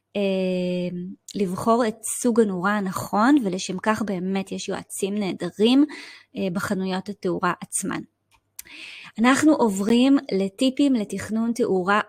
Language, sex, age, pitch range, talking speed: Hebrew, female, 20-39, 195-245 Hz, 95 wpm